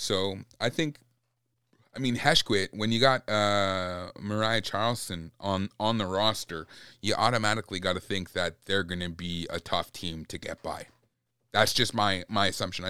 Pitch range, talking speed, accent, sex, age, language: 95-115 Hz, 170 wpm, American, male, 30-49, English